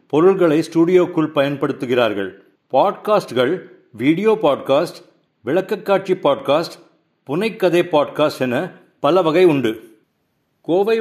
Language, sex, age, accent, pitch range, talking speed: English, male, 60-79, Indian, 140-185 Hz, 85 wpm